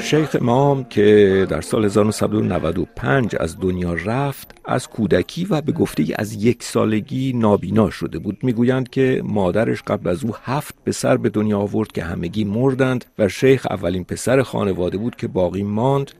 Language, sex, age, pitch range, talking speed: Persian, male, 50-69, 90-125 Hz, 165 wpm